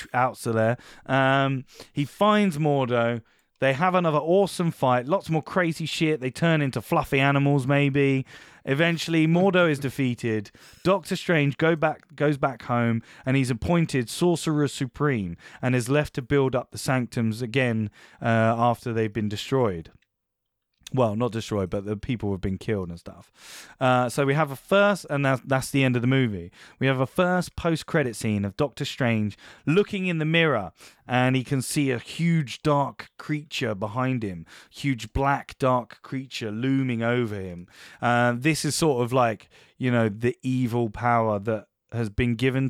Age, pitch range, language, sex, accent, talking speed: 20-39, 115-145 Hz, English, male, British, 175 wpm